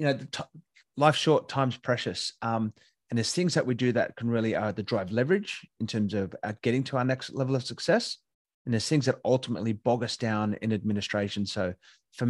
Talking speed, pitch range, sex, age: 220 wpm, 105-140 Hz, male, 30-49